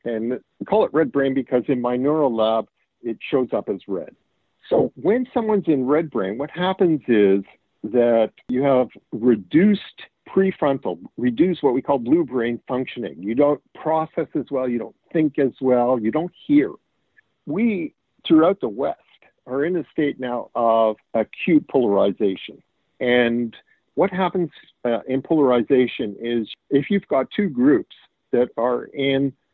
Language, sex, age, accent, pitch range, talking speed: English, male, 50-69, American, 125-170 Hz, 155 wpm